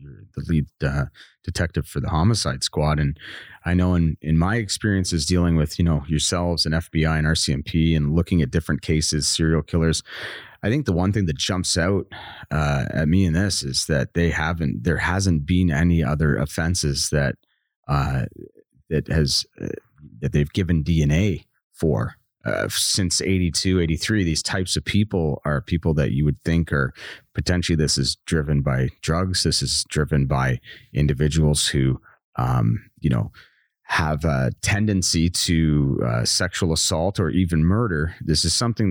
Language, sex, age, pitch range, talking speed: English, male, 30-49, 75-95 Hz, 170 wpm